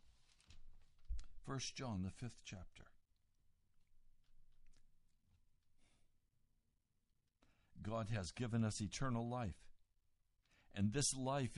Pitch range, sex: 90-150 Hz, male